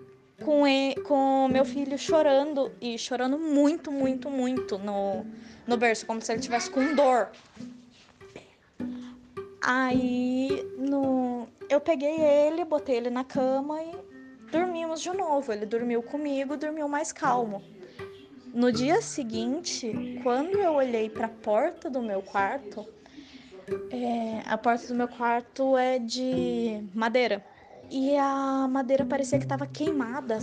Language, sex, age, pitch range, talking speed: Portuguese, female, 20-39, 225-275 Hz, 125 wpm